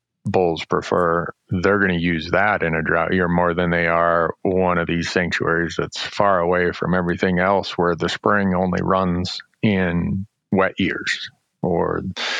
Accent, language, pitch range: American, English, 85-100 Hz